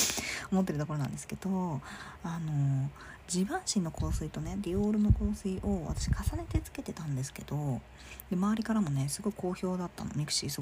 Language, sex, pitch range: Japanese, female, 140-210 Hz